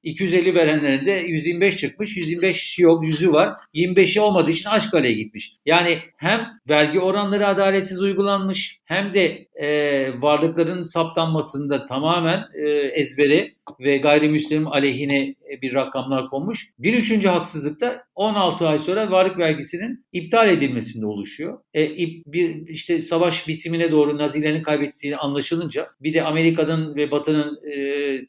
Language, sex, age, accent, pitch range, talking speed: Turkish, male, 60-79, native, 135-175 Hz, 125 wpm